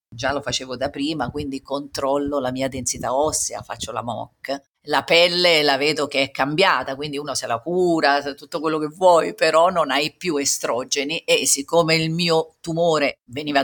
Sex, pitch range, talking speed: female, 145-185 Hz, 180 wpm